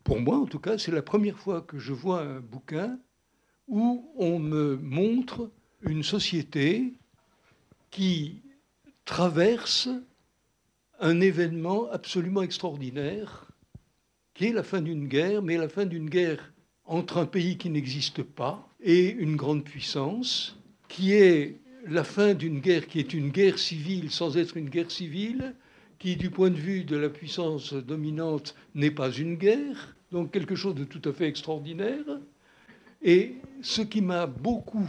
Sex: male